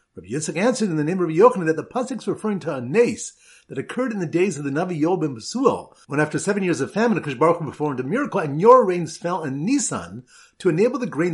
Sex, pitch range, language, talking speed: male, 150-210 Hz, English, 245 wpm